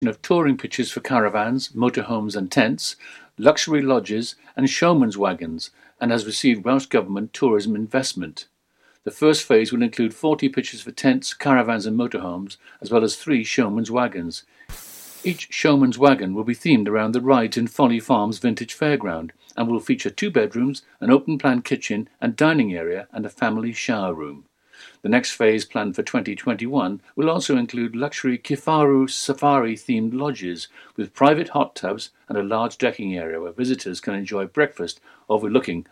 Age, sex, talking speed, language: 50-69, male, 165 wpm, English